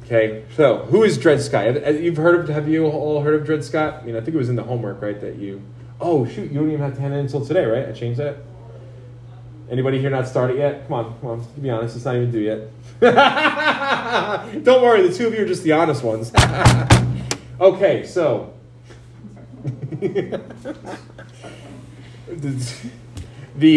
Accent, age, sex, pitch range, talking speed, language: American, 30-49, male, 115-145 Hz, 185 wpm, English